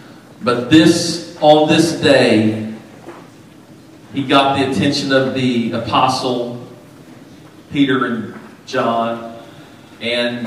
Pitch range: 125-155 Hz